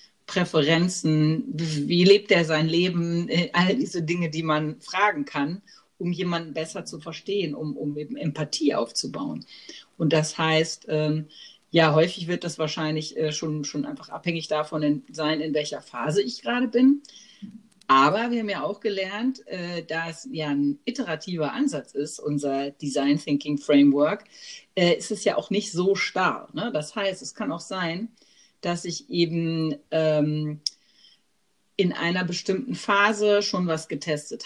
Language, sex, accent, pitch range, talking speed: German, female, German, 150-185 Hz, 155 wpm